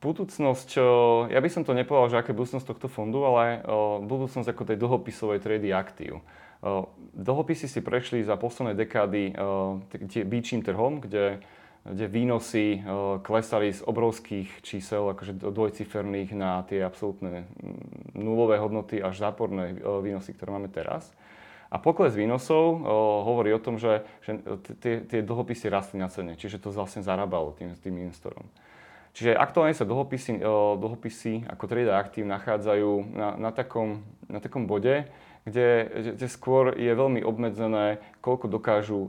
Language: Slovak